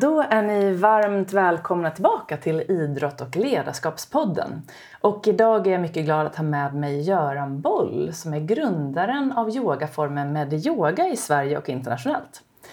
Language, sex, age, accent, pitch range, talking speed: Swedish, female, 30-49, native, 155-220 Hz, 155 wpm